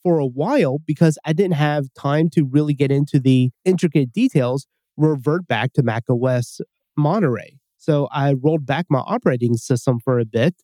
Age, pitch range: 30-49, 135-165 Hz